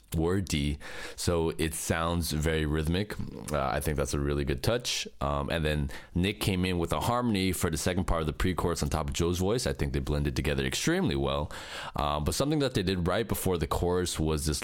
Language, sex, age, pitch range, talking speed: English, male, 20-39, 75-90 Hz, 230 wpm